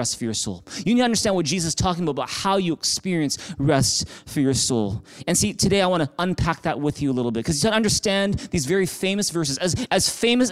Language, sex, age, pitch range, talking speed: English, male, 30-49, 160-215 Hz, 250 wpm